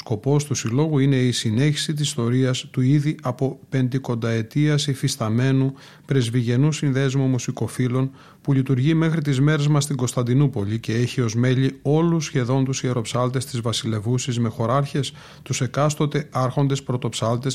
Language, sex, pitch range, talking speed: Greek, male, 125-145 Hz, 135 wpm